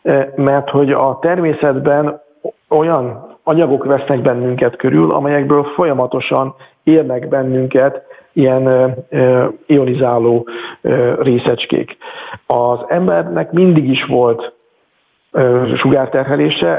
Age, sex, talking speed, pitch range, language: 50-69, male, 80 wpm, 125-145 Hz, Hungarian